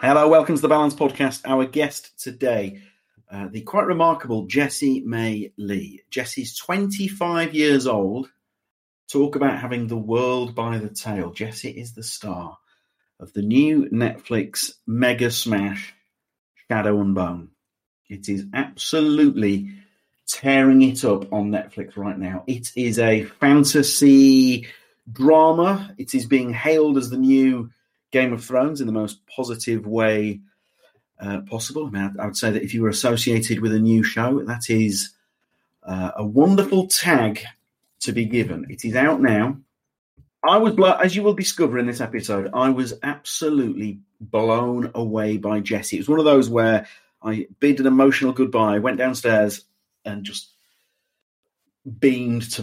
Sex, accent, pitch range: male, British, 105-140 Hz